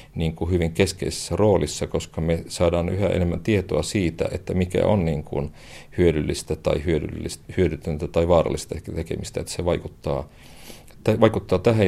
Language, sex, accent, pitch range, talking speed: Finnish, male, native, 80-90 Hz, 120 wpm